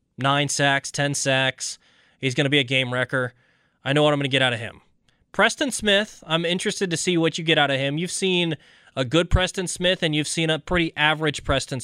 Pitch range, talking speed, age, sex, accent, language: 140-175 Hz, 235 wpm, 20-39, male, American, English